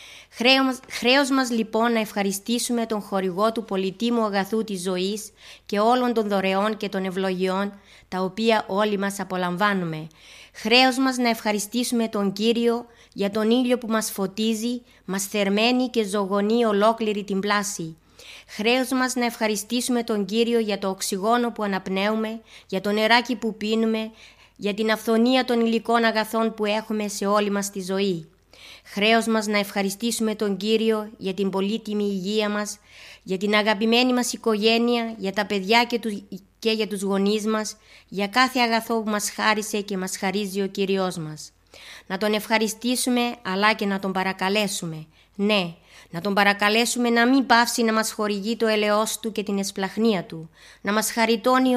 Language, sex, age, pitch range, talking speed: Greek, female, 20-39, 200-230 Hz, 160 wpm